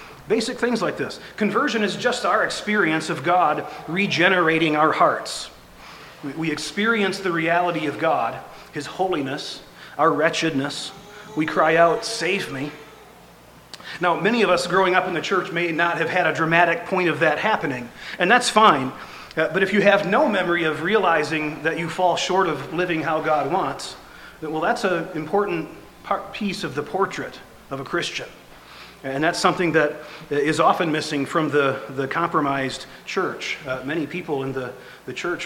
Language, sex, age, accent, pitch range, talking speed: English, male, 40-59, American, 155-190 Hz, 170 wpm